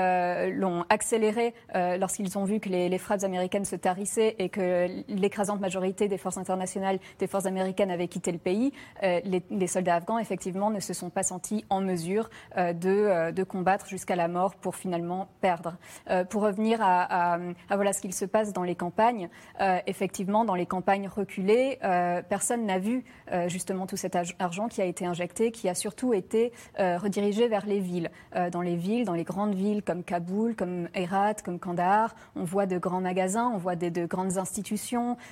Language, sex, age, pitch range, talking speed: French, female, 20-39, 180-210 Hz, 205 wpm